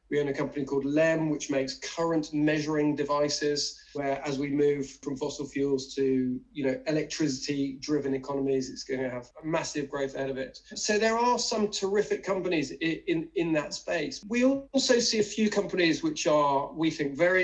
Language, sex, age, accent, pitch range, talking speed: English, male, 30-49, British, 140-195 Hz, 195 wpm